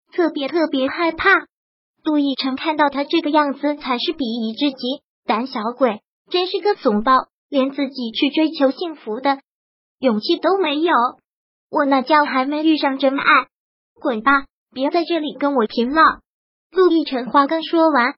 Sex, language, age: male, Chinese, 20-39